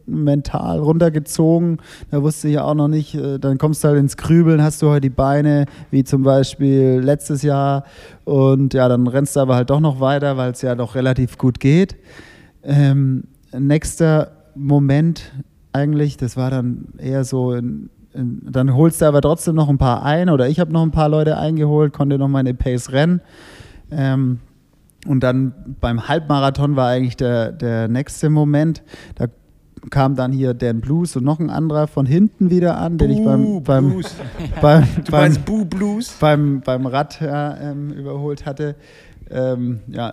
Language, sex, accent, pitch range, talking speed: German, male, German, 130-150 Hz, 165 wpm